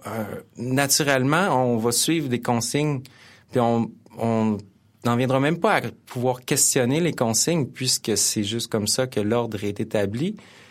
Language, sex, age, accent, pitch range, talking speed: French, male, 30-49, Canadian, 105-130 Hz, 155 wpm